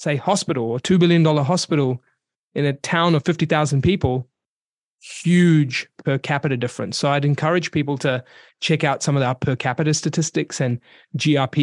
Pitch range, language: 140-165 Hz, English